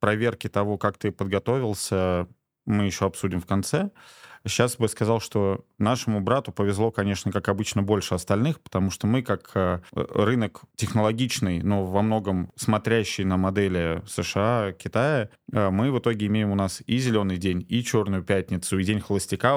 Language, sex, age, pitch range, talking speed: Russian, male, 20-39, 95-120 Hz, 155 wpm